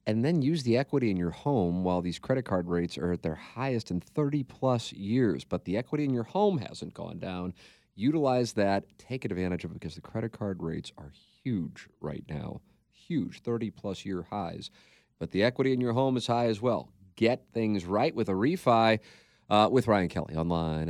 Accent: American